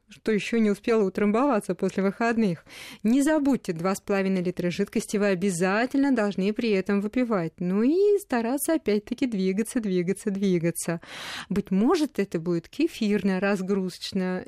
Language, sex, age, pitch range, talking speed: Russian, female, 20-39, 180-225 Hz, 130 wpm